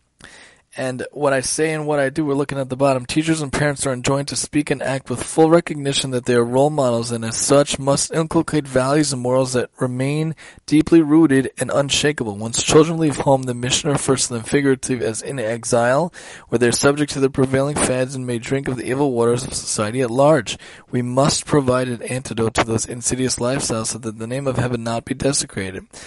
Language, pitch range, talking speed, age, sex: English, 120-140 Hz, 215 wpm, 20-39, male